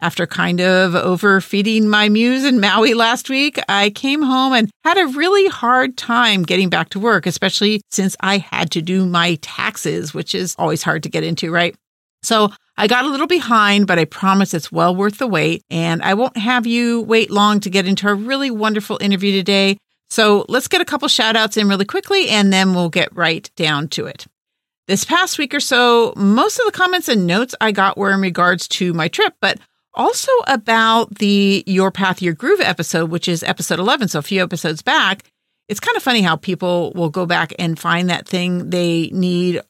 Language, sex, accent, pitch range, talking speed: English, female, American, 180-245 Hz, 210 wpm